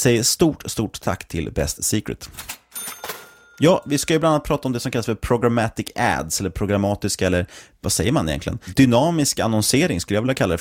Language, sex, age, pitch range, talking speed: Swedish, male, 30-49, 95-130 Hz, 200 wpm